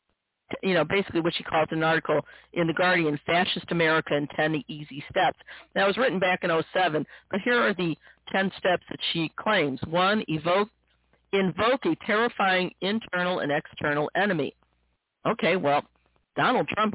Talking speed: 155 wpm